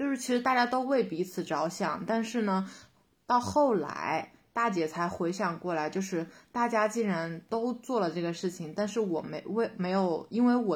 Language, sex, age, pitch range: Chinese, female, 20-39, 165-215 Hz